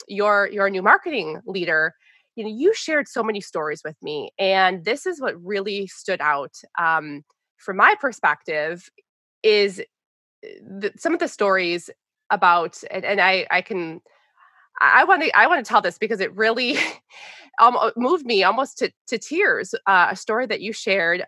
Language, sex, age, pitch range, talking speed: English, female, 20-39, 190-290 Hz, 165 wpm